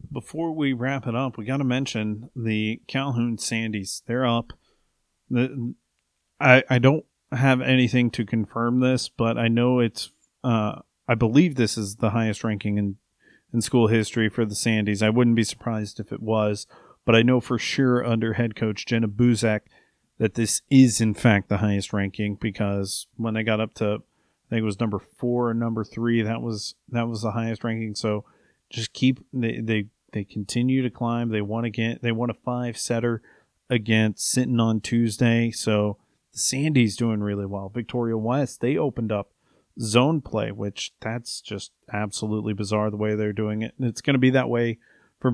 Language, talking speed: English, 185 wpm